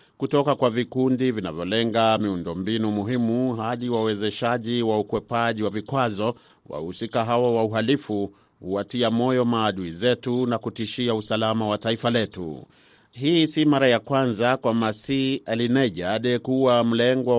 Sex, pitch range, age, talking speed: male, 105-125 Hz, 40-59, 130 wpm